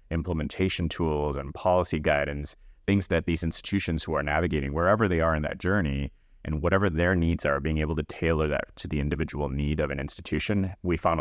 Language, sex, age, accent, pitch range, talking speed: English, male, 30-49, American, 75-85 Hz, 200 wpm